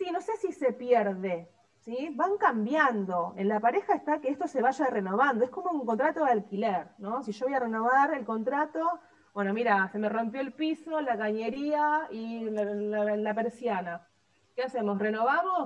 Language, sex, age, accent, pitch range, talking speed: Spanish, female, 30-49, Argentinian, 205-270 Hz, 190 wpm